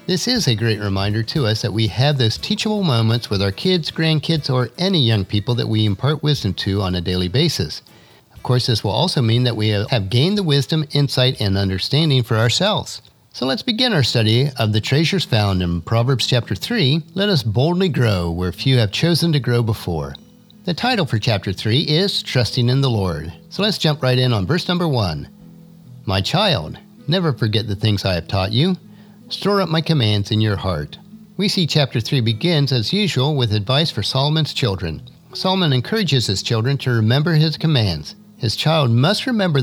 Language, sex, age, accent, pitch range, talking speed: English, male, 50-69, American, 110-170 Hz, 200 wpm